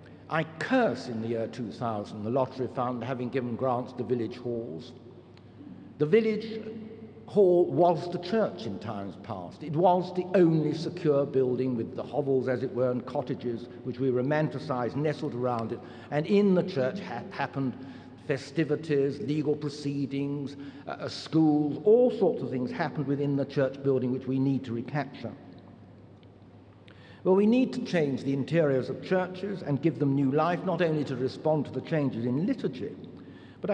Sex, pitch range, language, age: male, 130-185 Hz, English, 60-79